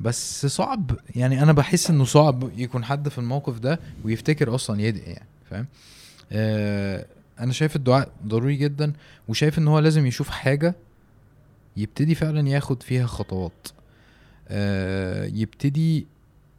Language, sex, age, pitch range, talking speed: Arabic, male, 20-39, 100-130 Hz, 130 wpm